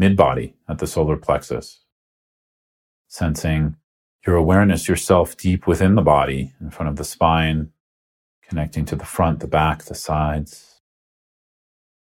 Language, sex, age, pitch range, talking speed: English, male, 40-59, 75-85 Hz, 130 wpm